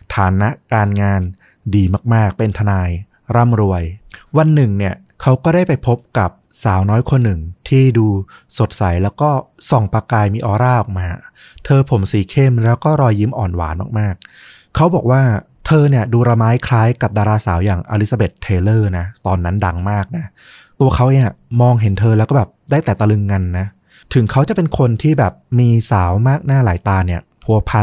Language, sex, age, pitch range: Thai, male, 20-39, 100-130 Hz